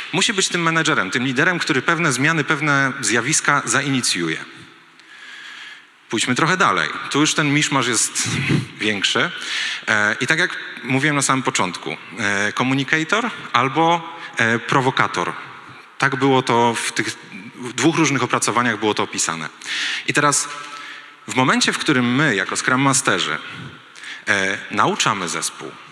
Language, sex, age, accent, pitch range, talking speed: Polish, male, 30-49, native, 120-155 Hz, 125 wpm